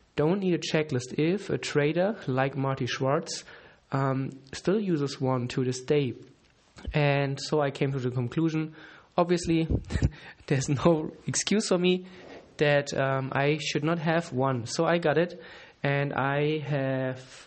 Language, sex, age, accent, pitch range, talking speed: English, male, 20-39, German, 130-155 Hz, 150 wpm